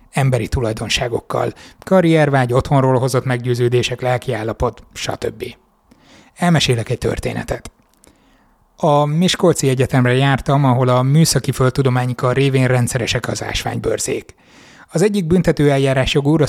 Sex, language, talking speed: male, Hungarian, 100 wpm